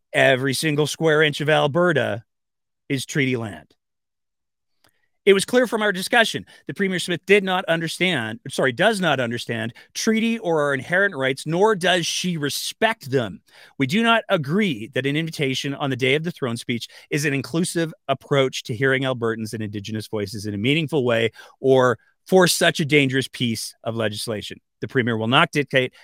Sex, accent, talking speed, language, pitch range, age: male, American, 175 wpm, English, 120-155 Hz, 30-49